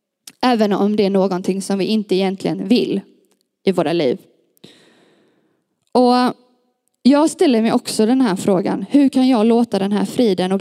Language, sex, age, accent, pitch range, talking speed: Swedish, female, 20-39, native, 200-255 Hz, 165 wpm